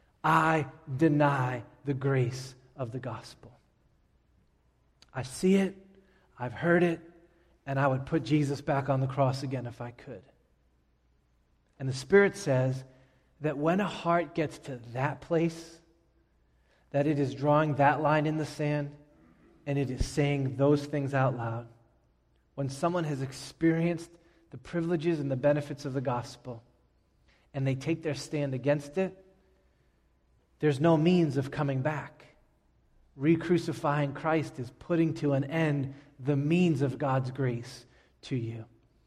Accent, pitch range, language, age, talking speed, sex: American, 125-155 Hz, English, 30-49, 145 wpm, male